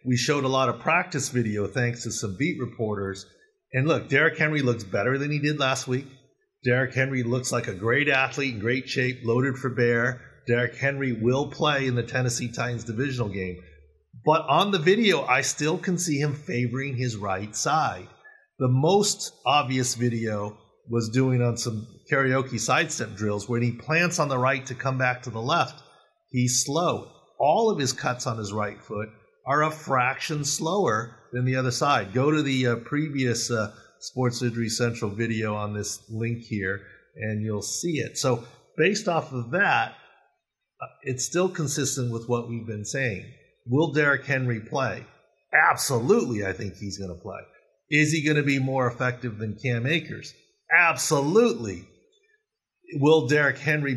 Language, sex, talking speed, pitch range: English, male, 175 wpm, 115-150 Hz